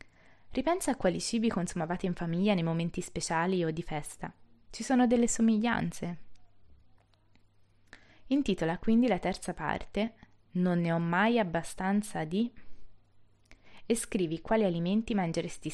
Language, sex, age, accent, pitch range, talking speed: Italian, female, 20-39, native, 150-205 Hz, 125 wpm